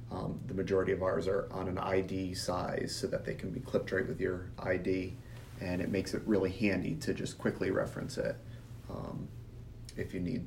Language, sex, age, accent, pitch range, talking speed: English, male, 30-49, American, 95-115 Hz, 200 wpm